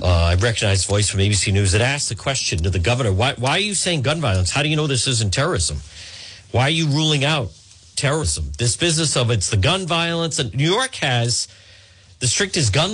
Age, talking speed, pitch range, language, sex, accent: 40-59, 225 wpm, 95-150 Hz, English, male, American